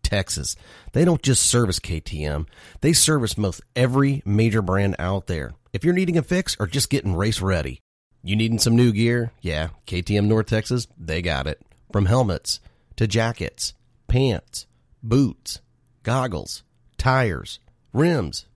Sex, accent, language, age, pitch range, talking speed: male, American, English, 30-49, 90-120 Hz, 145 wpm